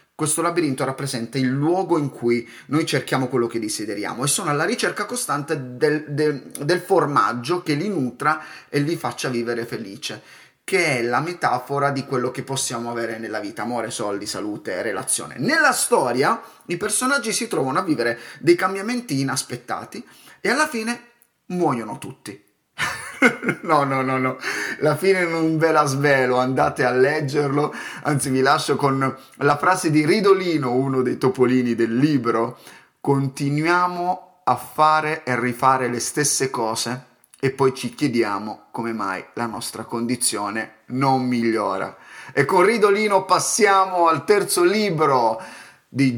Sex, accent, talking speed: male, native, 145 wpm